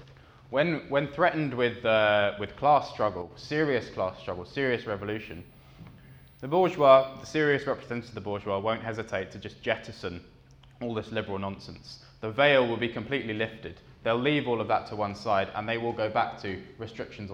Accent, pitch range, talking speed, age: British, 95-120 Hz, 175 wpm, 20-39